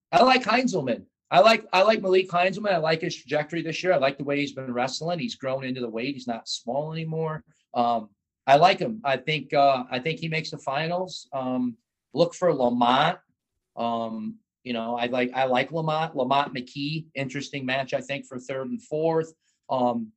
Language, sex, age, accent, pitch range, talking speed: English, male, 40-59, American, 125-160 Hz, 200 wpm